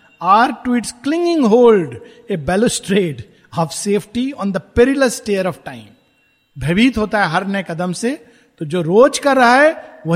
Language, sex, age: Hindi, male, 50-69